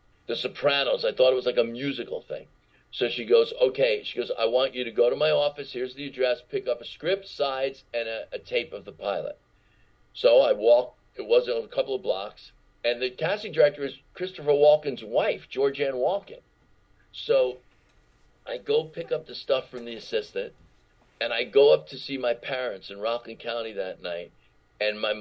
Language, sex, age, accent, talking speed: English, male, 50-69, American, 200 wpm